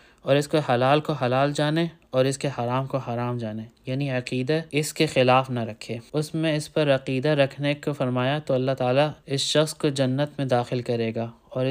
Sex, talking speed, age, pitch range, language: male, 210 wpm, 20-39, 125-145 Hz, Urdu